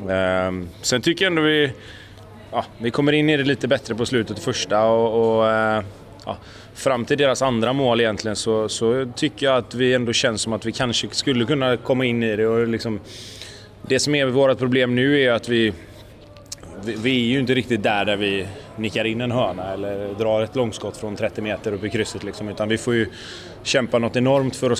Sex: male